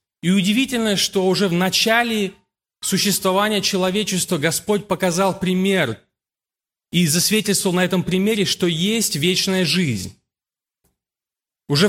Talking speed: 105 wpm